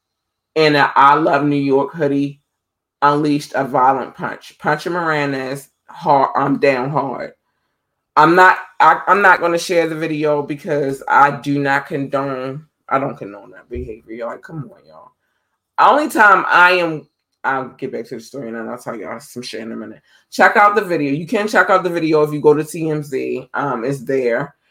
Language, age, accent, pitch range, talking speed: English, 20-39, American, 140-170 Hz, 190 wpm